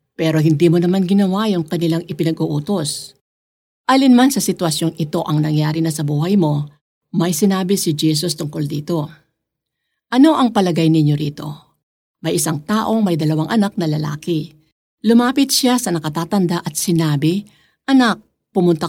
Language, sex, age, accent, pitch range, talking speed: Filipino, female, 50-69, native, 155-205 Hz, 145 wpm